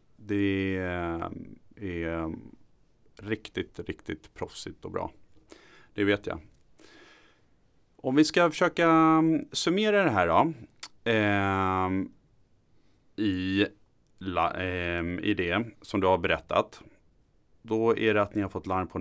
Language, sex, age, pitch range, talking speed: Swedish, male, 30-49, 85-110 Hz, 115 wpm